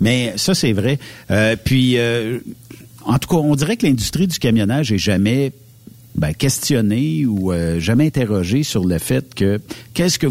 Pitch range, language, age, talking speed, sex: 105-135 Hz, French, 60-79, 175 wpm, male